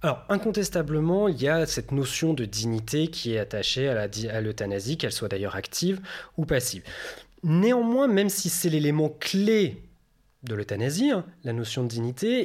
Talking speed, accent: 175 wpm, French